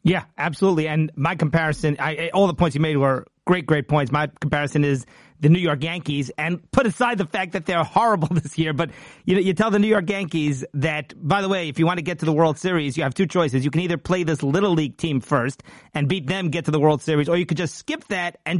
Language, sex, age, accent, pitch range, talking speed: English, male, 30-49, American, 145-175 Hz, 270 wpm